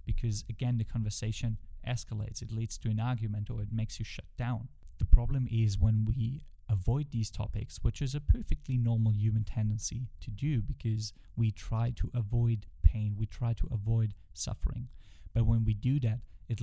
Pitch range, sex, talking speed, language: 105-120 Hz, male, 180 wpm, English